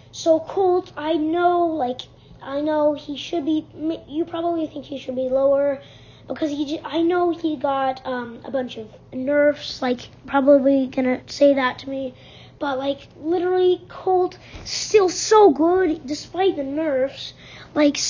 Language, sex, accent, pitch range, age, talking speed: English, female, American, 260-315 Hz, 20-39, 155 wpm